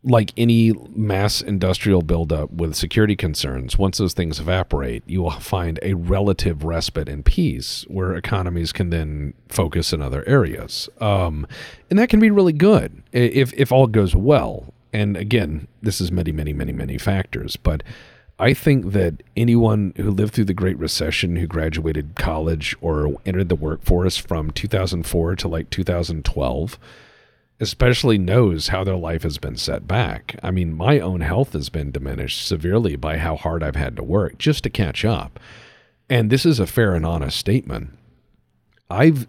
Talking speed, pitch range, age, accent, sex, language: 170 wpm, 80-115 Hz, 40-59, American, male, English